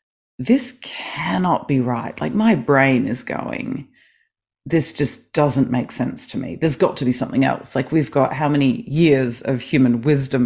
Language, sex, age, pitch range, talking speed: English, female, 30-49, 125-155 Hz, 180 wpm